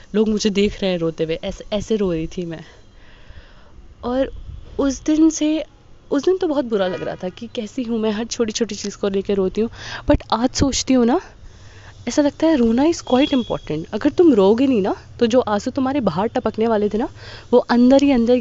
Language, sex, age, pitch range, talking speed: Hindi, female, 20-39, 190-270 Hz, 220 wpm